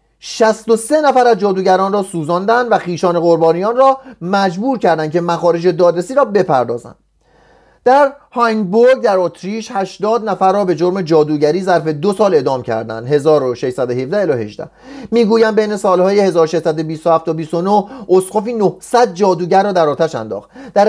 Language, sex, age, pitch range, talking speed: Persian, male, 30-49, 170-225 Hz, 140 wpm